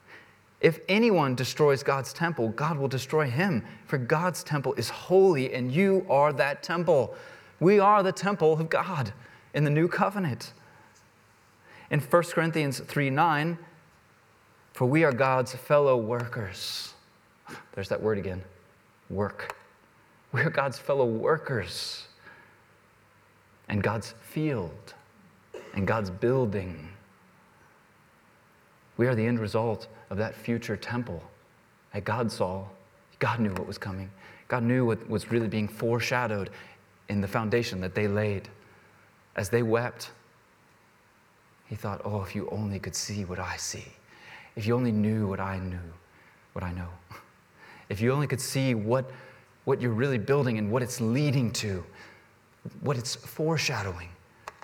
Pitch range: 100-135 Hz